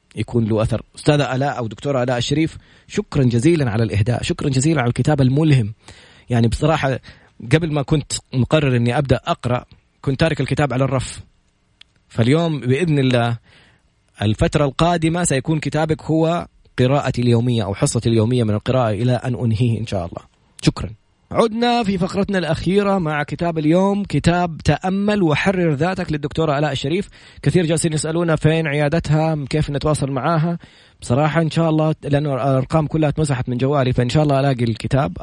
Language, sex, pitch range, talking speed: Arabic, male, 120-155 Hz, 155 wpm